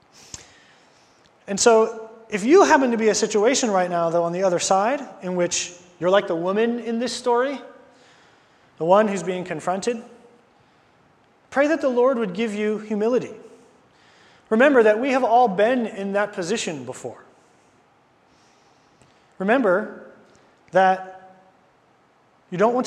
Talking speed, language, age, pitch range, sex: 140 wpm, English, 30-49, 185-230 Hz, male